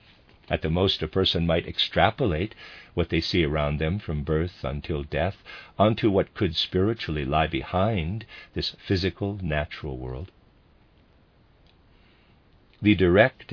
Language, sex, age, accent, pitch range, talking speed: English, male, 50-69, American, 75-100 Hz, 125 wpm